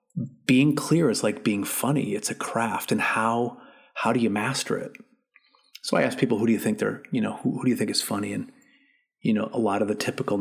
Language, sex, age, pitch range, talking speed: English, male, 30-49, 100-155 Hz, 240 wpm